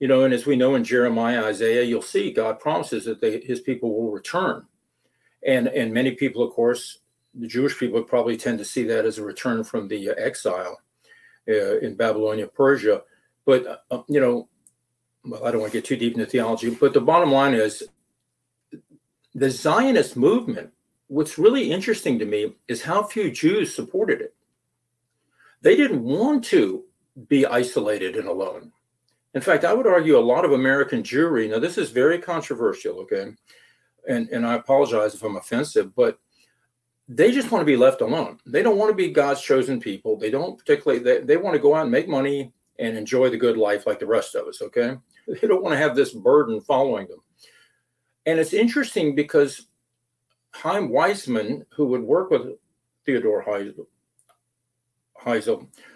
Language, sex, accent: English, male, American